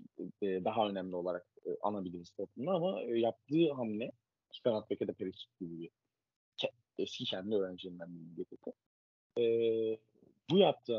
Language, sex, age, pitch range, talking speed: Turkish, male, 30-49, 95-130 Hz, 100 wpm